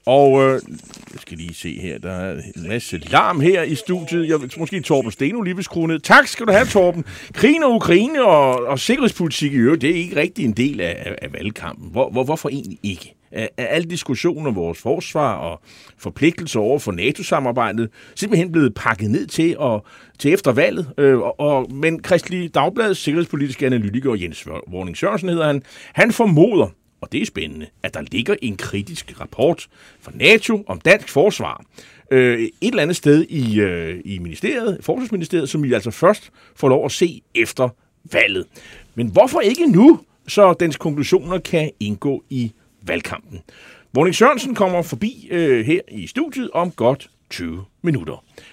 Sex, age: male, 30-49